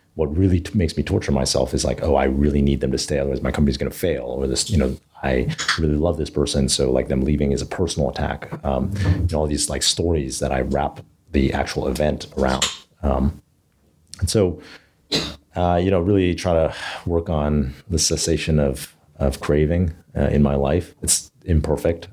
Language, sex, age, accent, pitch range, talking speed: English, male, 40-59, American, 70-85 Hz, 200 wpm